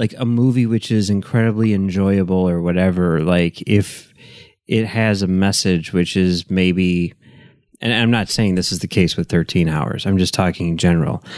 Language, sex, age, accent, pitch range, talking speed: English, male, 30-49, American, 90-120 Hz, 180 wpm